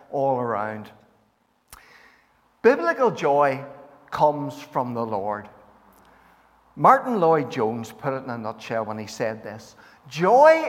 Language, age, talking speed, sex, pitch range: English, 60-79, 110 wpm, male, 115-165 Hz